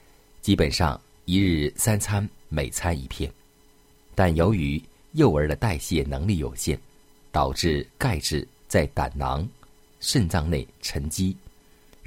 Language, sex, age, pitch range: Chinese, male, 50-69, 70-95 Hz